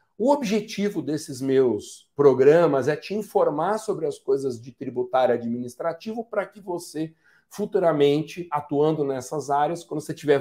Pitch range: 135-170 Hz